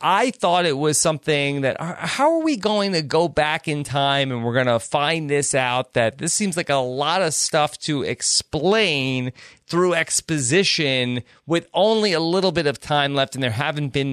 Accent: American